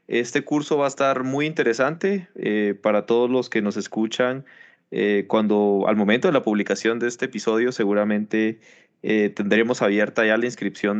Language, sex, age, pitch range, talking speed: Spanish, male, 20-39, 110-135 Hz, 170 wpm